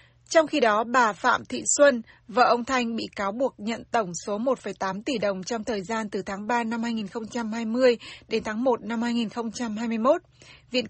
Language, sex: Vietnamese, female